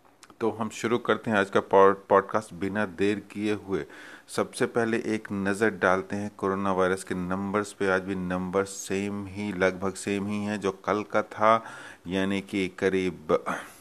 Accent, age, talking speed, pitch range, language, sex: native, 30-49, 175 wpm, 95-105 Hz, Hindi, male